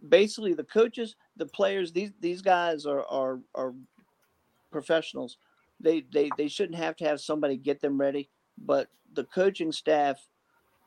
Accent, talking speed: American, 150 wpm